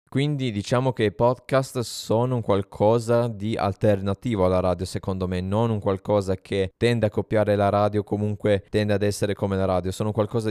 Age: 20-39